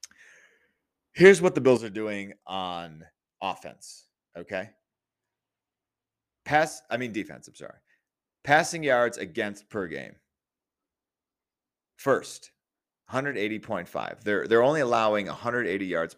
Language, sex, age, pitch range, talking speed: English, male, 30-49, 90-120 Hz, 105 wpm